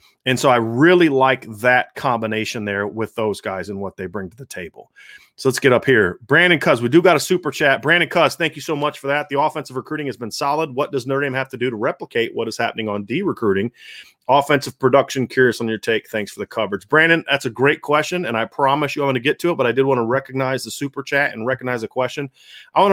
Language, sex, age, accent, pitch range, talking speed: English, male, 30-49, American, 125-150 Hz, 260 wpm